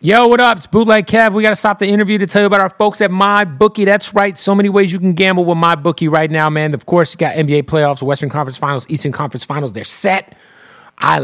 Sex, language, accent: male, English, American